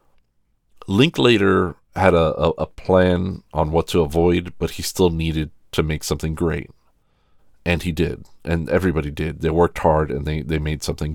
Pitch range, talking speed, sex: 75-95 Hz, 180 wpm, male